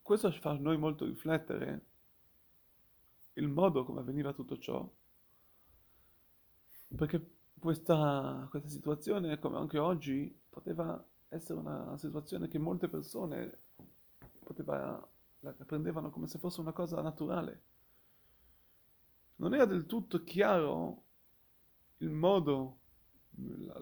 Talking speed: 110 wpm